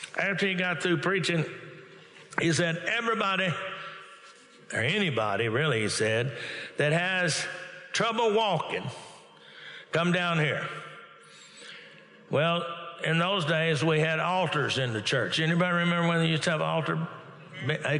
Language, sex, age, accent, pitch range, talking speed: English, male, 60-79, American, 150-175 Hz, 130 wpm